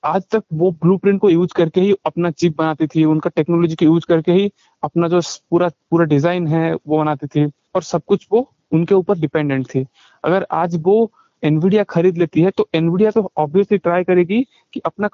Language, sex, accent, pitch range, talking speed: Hindi, male, native, 160-195 Hz, 205 wpm